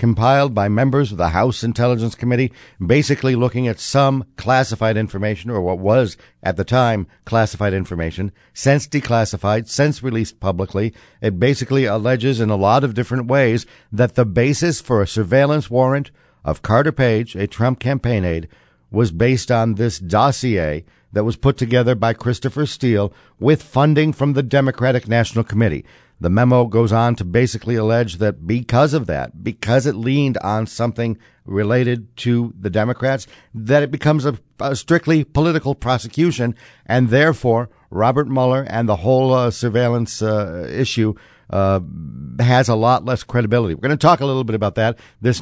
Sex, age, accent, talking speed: male, 60-79, American, 165 wpm